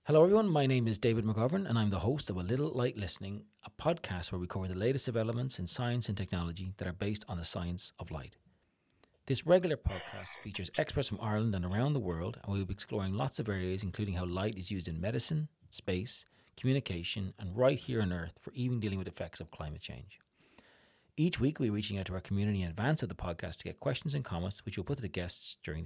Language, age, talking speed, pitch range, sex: English, 40-59, 240 wpm, 90-125 Hz, male